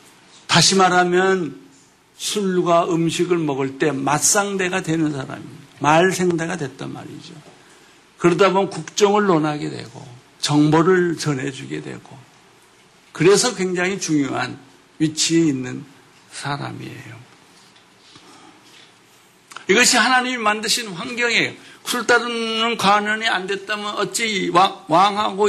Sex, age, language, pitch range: male, 60-79, Korean, 155-205 Hz